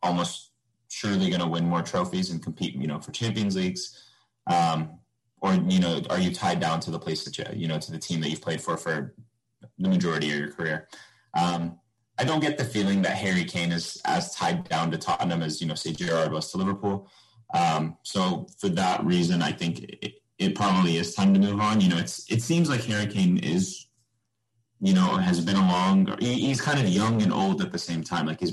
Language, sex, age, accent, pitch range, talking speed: English, male, 30-49, American, 85-120 Hz, 225 wpm